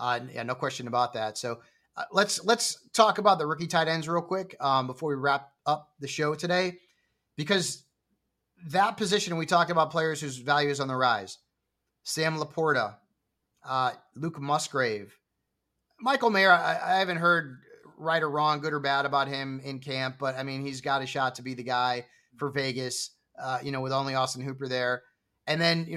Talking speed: 195 wpm